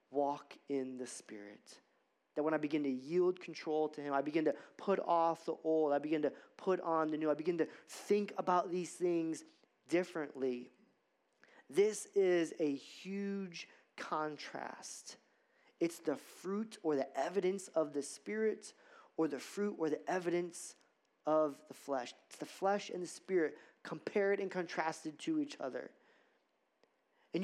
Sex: male